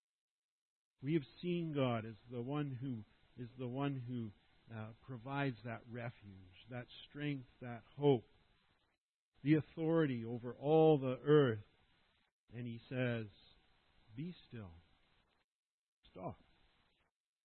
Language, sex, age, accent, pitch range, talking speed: English, male, 50-69, American, 115-160 Hz, 110 wpm